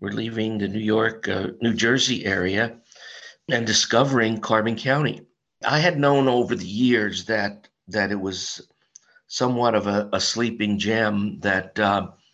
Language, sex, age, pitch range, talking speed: English, male, 50-69, 100-115 Hz, 150 wpm